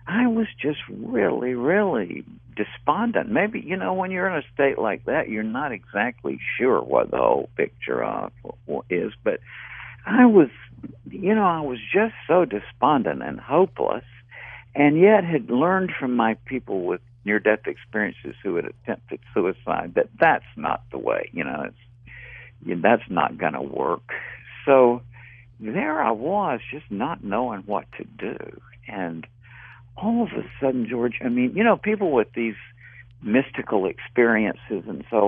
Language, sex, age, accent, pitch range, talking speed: English, male, 60-79, American, 120-160 Hz, 155 wpm